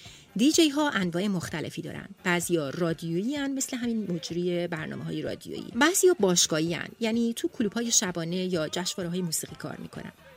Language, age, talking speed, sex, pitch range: Persian, 30-49, 160 wpm, female, 165-230 Hz